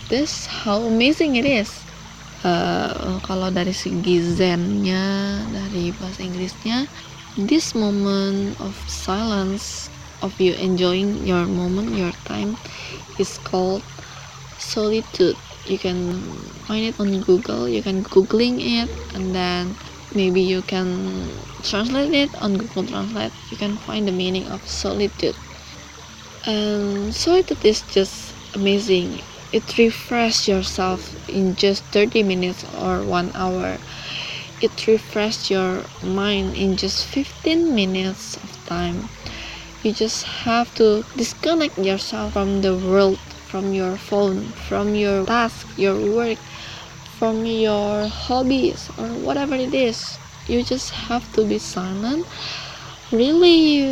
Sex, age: female, 20-39